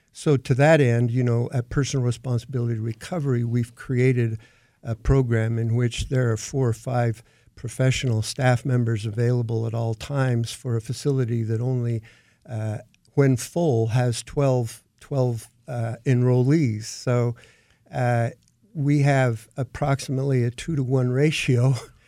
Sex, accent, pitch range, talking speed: male, American, 115-135 Hz, 135 wpm